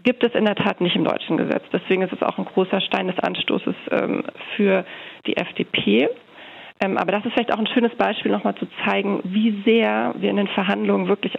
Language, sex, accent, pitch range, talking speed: German, female, German, 200-245 Hz, 215 wpm